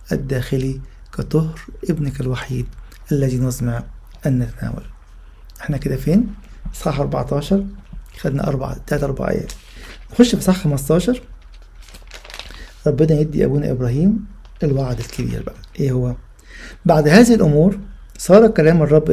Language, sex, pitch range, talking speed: English, male, 125-170 Hz, 90 wpm